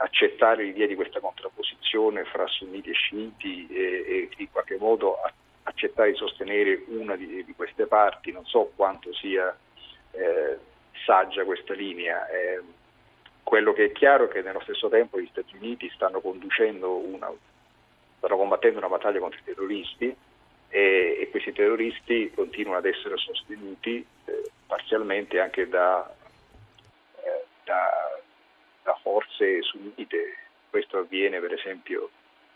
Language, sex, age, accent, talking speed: Italian, male, 50-69, native, 135 wpm